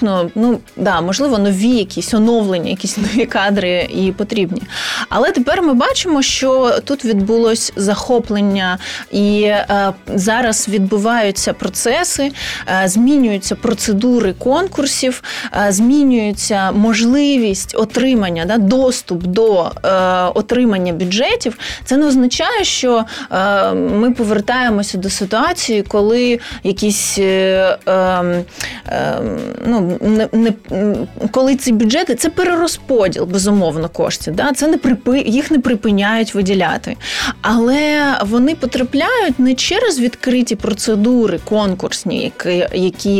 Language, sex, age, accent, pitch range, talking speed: Ukrainian, female, 20-39, native, 195-245 Hz, 105 wpm